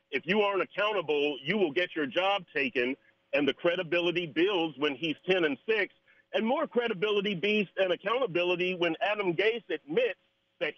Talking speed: 165 wpm